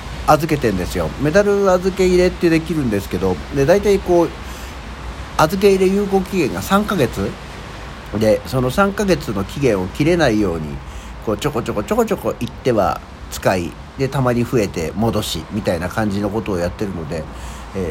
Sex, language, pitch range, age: male, Japanese, 75-120 Hz, 60-79